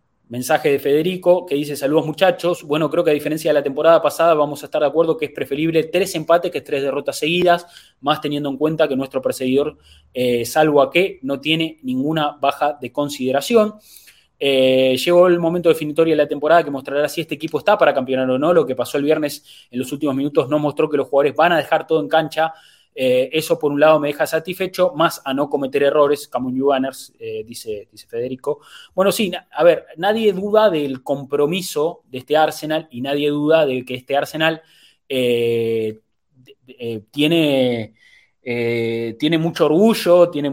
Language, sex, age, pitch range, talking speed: Spanish, male, 20-39, 130-160 Hz, 190 wpm